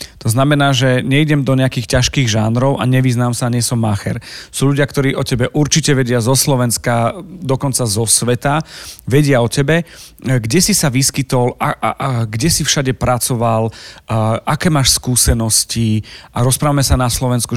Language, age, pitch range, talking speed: Slovak, 40-59, 115-145 Hz, 165 wpm